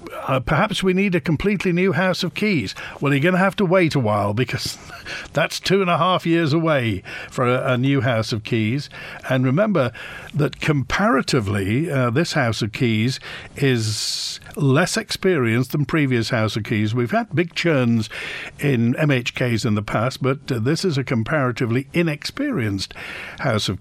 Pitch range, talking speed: 115-155 Hz, 175 wpm